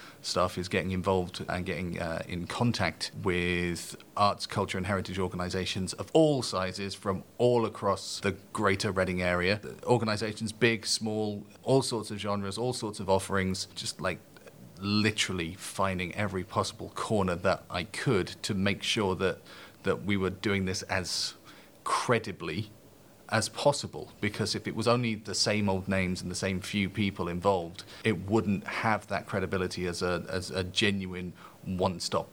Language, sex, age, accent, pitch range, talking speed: English, male, 30-49, British, 90-105 Hz, 160 wpm